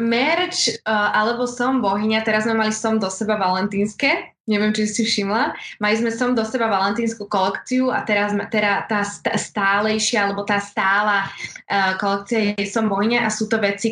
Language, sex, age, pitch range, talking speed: Slovak, female, 20-39, 200-240 Hz, 170 wpm